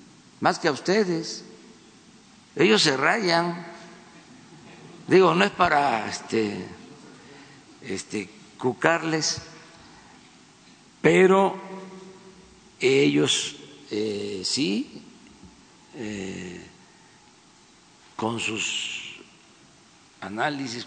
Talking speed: 65 wpm